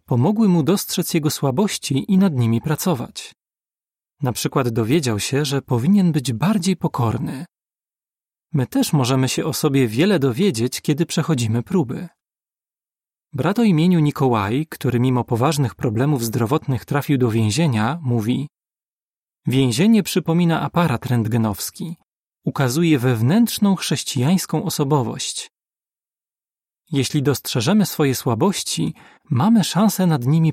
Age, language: 30-49, Polish